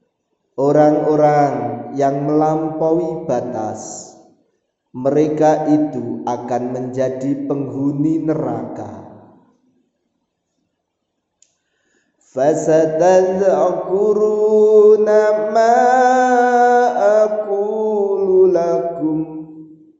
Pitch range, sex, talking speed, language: 135-175 Hz, male, 40 wpm, Indonesian